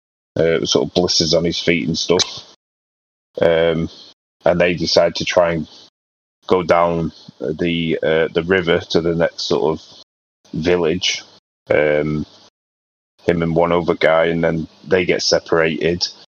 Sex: male